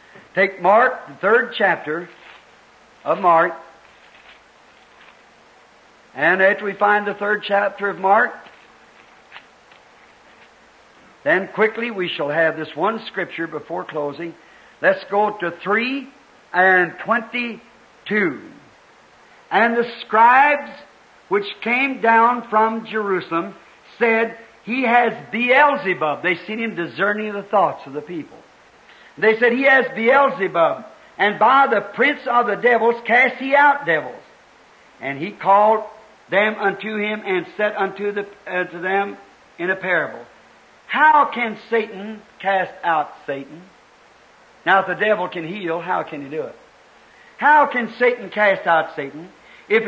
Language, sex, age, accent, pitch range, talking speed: English, male, 60-79, American, 185-240 Hz, 130 wpm